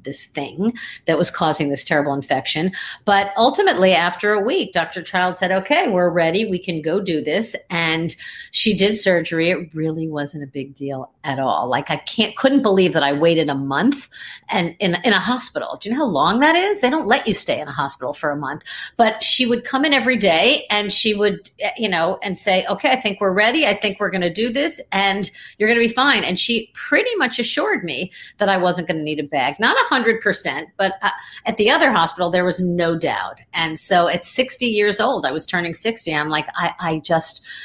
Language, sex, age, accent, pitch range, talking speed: English, female, 50-69, American, 160-220 Hz, 225 wpm